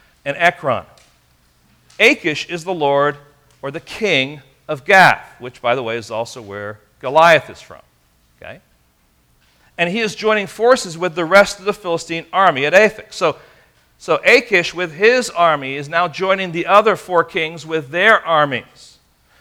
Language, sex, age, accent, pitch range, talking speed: English, male, 40-59, American, 125-185 Hz, 160 wpm